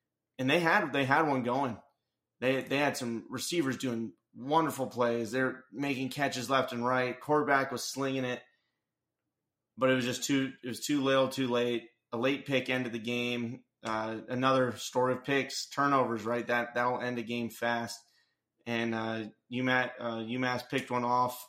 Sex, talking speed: male, 175 wpm